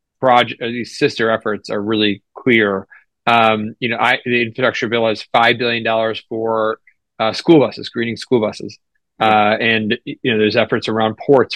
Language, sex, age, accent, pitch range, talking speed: English, male, 30-49, American, 105-125 Hz, 165 wpm